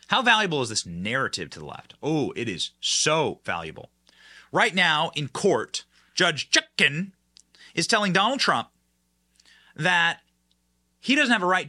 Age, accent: 30-49, American